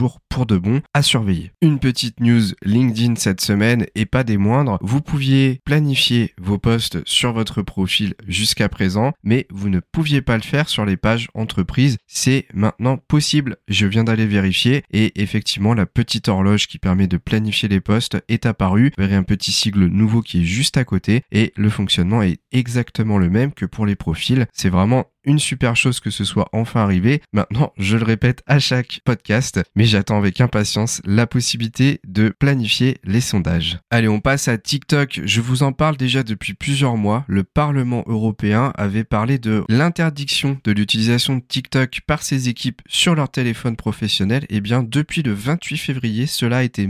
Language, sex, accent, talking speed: French, male, French, 185 wpm